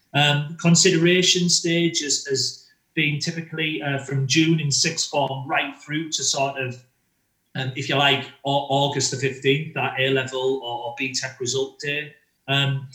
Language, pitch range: English, 135-155 Hz